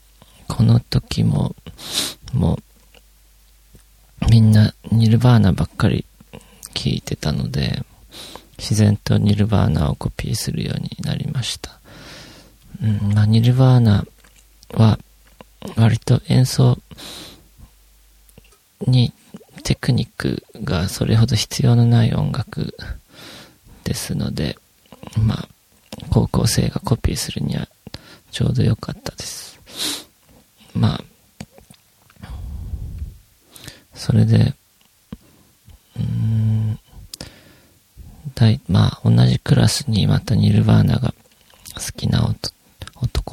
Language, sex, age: Japanese, male, 40-59